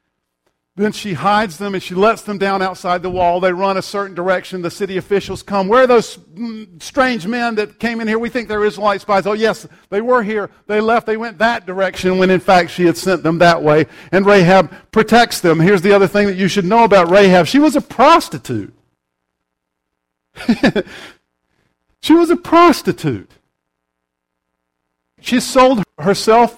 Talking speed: 185 wpm